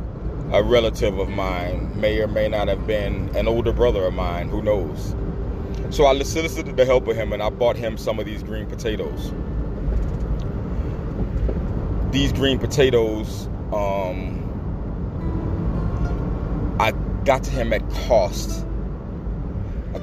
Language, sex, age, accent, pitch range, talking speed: English, male, 30-49, American, 95-115 Hz, 130 wpm